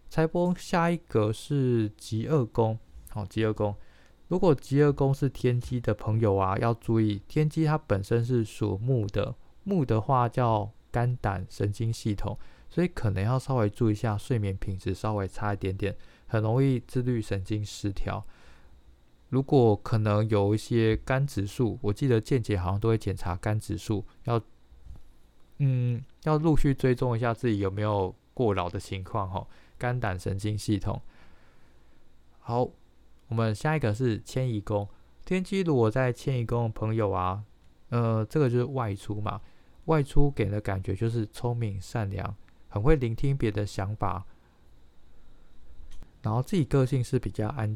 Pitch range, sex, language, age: 100-125 Hz, male, Chinese, 20-39